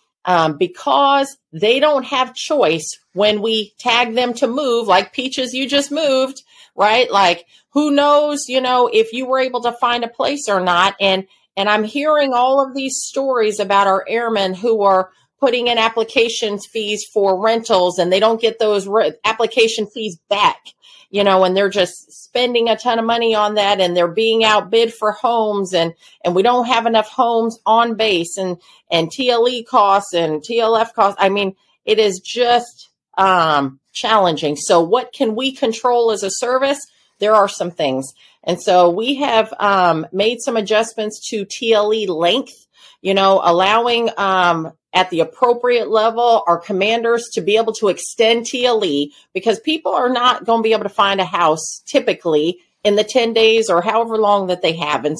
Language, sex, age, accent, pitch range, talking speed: English, female, 40-59, American, 195-245 Hz, 180 wpm